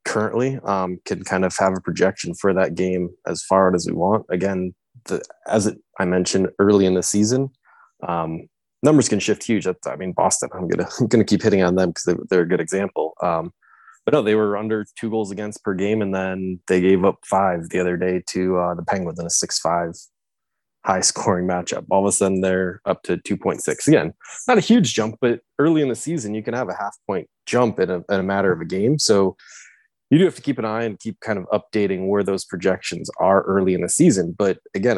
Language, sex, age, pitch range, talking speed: English, male, 20-39, 90-110 Hz, 235 wpm